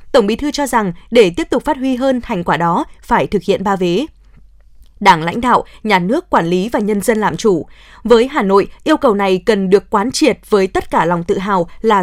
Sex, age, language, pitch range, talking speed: female, 20-39, Vietnamese, 195-260 Hz, 240 wpm